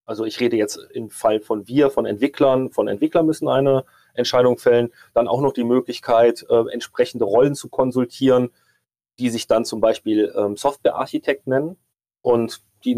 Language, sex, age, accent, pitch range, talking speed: German, male, 30-49, German, 115-145 Hz, 165 wpm